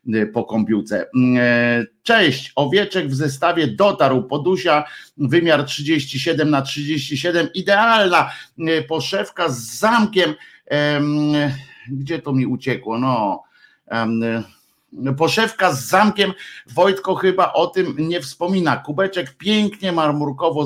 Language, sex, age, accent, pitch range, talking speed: Polish, male, 50-69, native, 135-175 Hz, 95 wpm